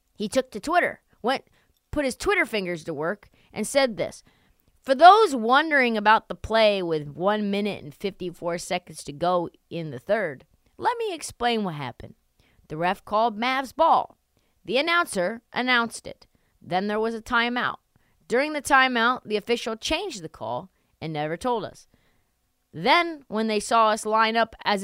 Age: 30-49